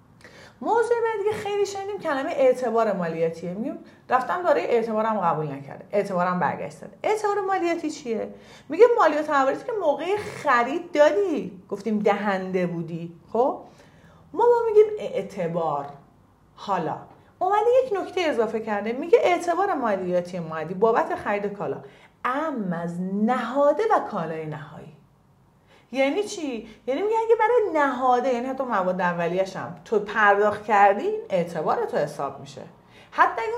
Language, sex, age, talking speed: Persian, female, 40-59, 130 wpm